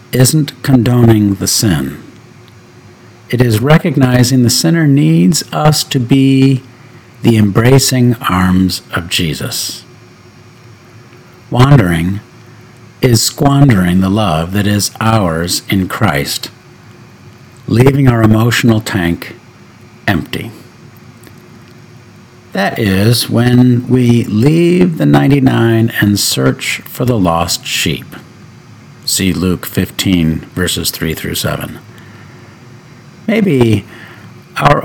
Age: 50-69